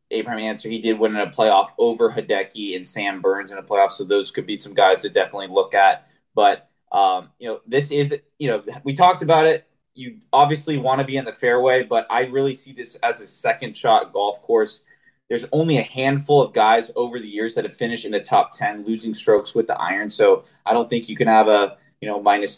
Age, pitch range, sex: 20-39, 110-160 Hz, male